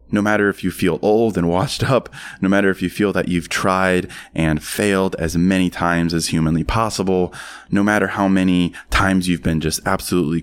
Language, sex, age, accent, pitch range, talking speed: English, male, 20-39, American, 80-100 Hz, 195 wpm